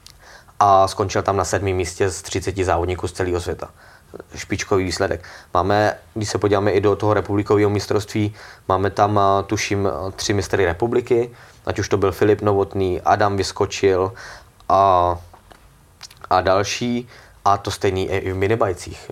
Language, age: Czech, 20-39